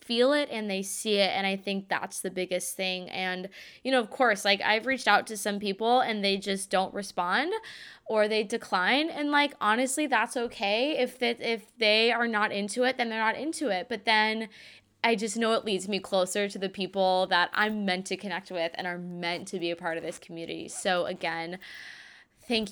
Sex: female